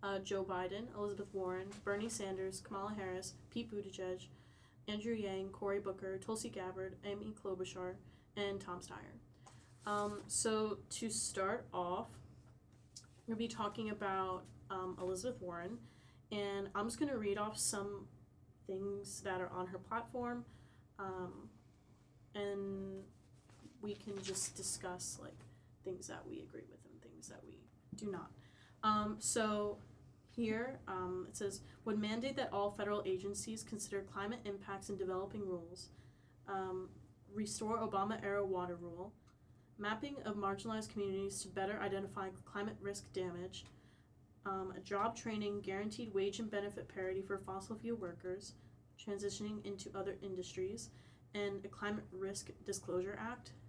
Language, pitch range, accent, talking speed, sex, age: English, 185-205 Hz, American, 140 wpm, female, 10-29